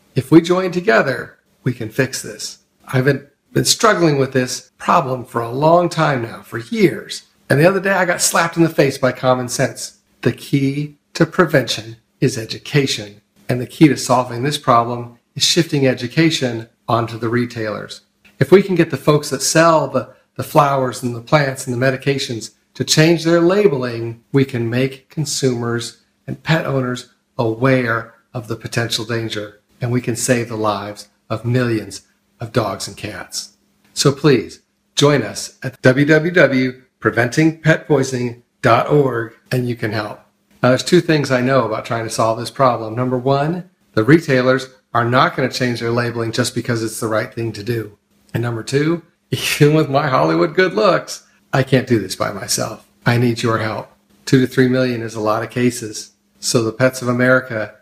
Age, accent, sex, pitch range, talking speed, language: 40-59, American, male, 115-140 Hz, 180 wpm, English